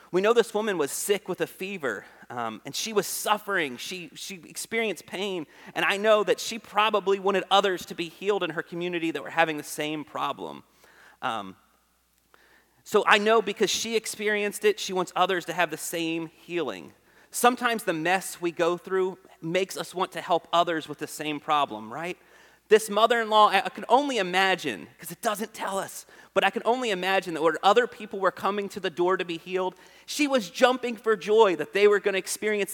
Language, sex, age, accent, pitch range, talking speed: English, male, 30-49, American, 165-210 Hz, 200 wpm